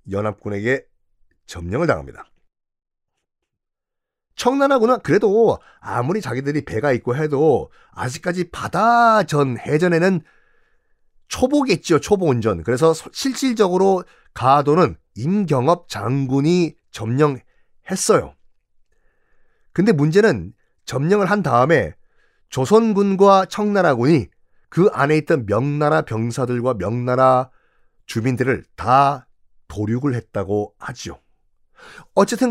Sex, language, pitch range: male, Korean, 125-195 Hz